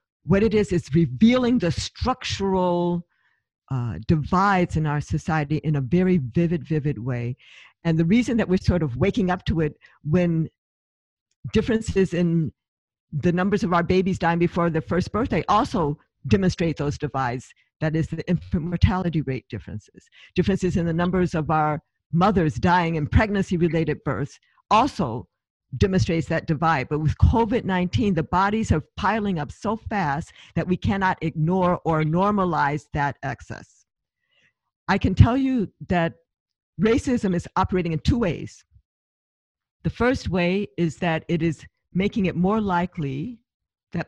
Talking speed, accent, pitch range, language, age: 150 wpm, American, 150-185 Hz, English, 50-69